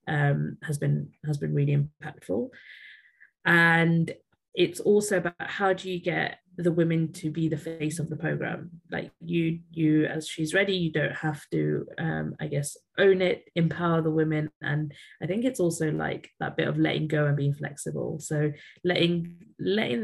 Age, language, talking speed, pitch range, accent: 20-39, English, 175 wpm, 145-170 Hz, British